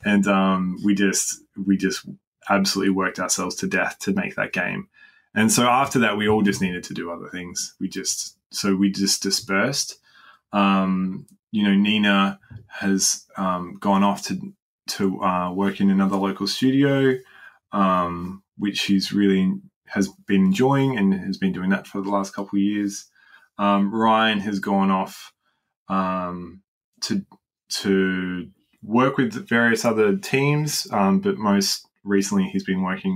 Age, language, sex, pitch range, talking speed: 20-39, English, male, 95-110 Hz, 155 wpm